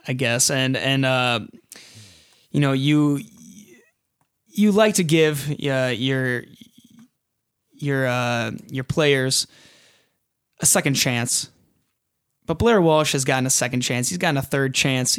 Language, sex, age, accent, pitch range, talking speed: English, male, 20-39, American, 125-150 Hz, 135 wpm